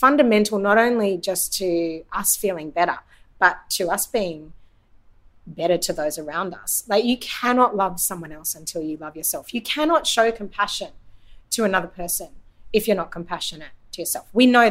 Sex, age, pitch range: female, 30-49, 155-210 Hz